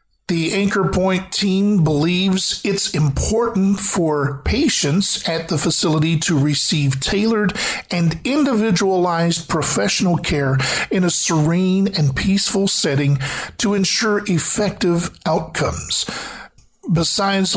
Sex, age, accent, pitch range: male, 50-69, American, 160-200 Hz